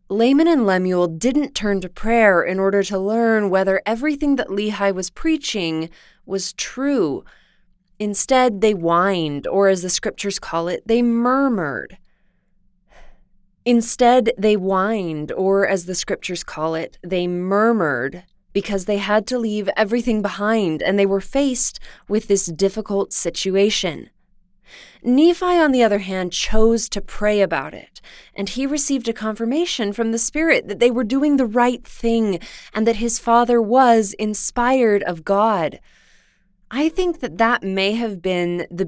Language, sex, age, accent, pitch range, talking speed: English, female, 20-39, American, 185-235 Hz, 150 wpm